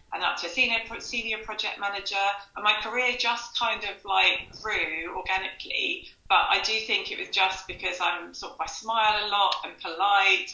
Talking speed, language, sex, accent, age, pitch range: 195 wpm, English, female, British, 30-49, 180-225 Hz